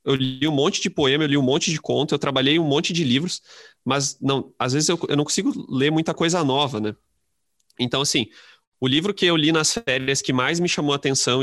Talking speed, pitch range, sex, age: 240 wpm, 120-145 Hz, male, 20-39